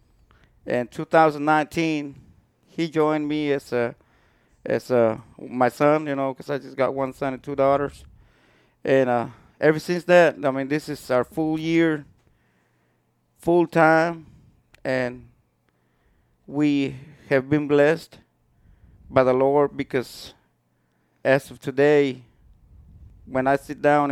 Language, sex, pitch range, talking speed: English, male, 125-155 Hz, 130 wpm